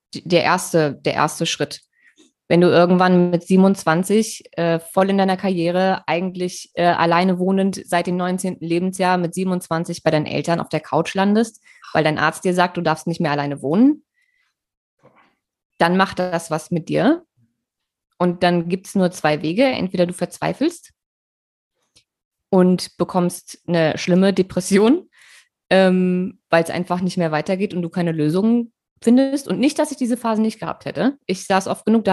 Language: German